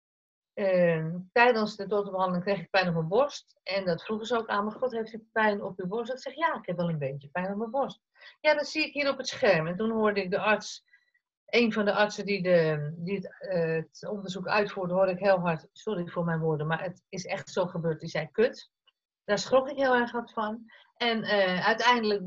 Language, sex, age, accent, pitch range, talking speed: Dutch, female, 50-69, Dutch, 180-225 Hz, 235 wpm